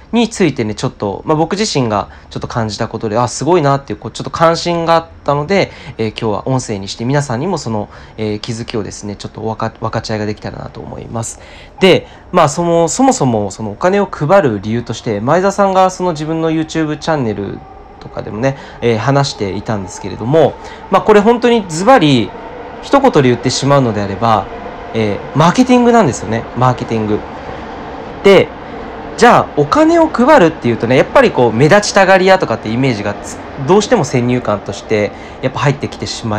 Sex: male